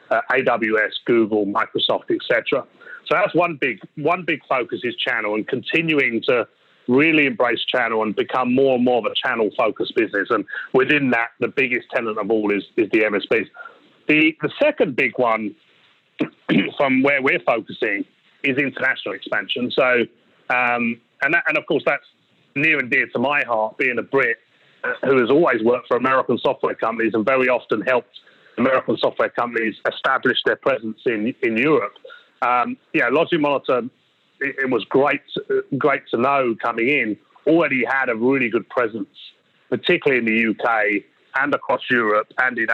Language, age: English, 30-49